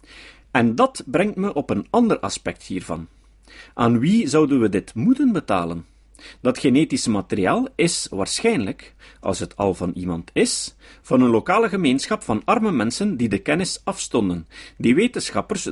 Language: Dutch